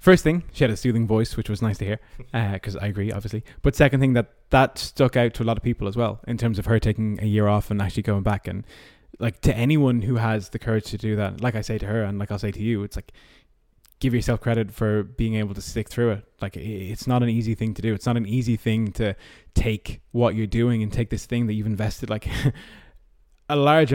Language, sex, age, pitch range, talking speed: English, male, 20-39, 105-120 Hz, 265 wpm